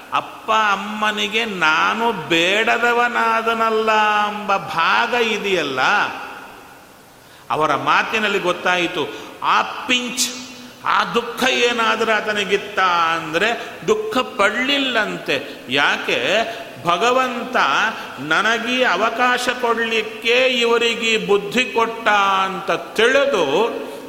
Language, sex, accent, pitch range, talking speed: Kannada, male, native, 205-250 Hz, 70 wpm